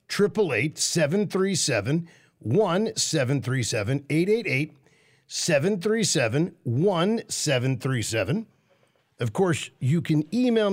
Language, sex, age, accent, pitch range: English, male, 50-69, American, 120-165 Hz